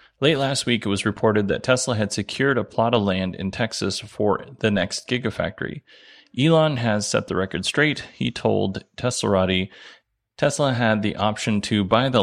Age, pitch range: 30-49, 100-125 Hz